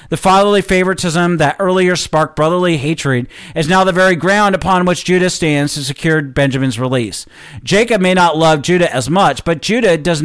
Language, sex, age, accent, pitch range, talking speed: English, male, 40-59, American, 150-195 Hz, 180 wpm